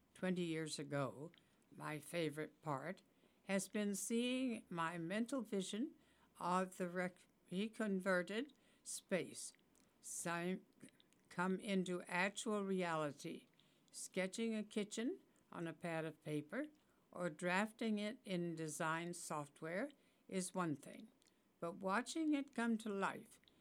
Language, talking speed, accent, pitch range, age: English, 110 wpm, American, 170-220 Hz, 60-79